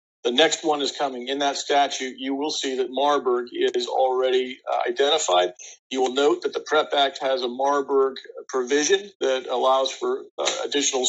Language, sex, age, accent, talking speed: English, male, 50-69, American, 180 wpm